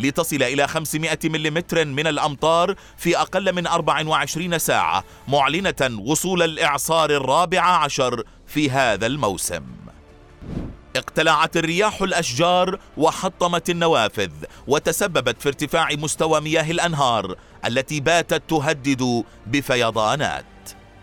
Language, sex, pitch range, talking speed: Arabic, male, 145-170 Hz, 95 wpm